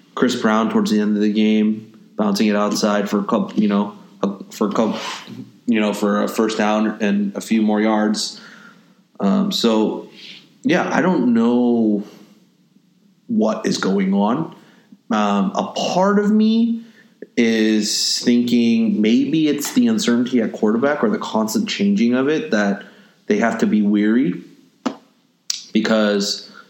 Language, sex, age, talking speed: English, male, 30-49, 135 wpm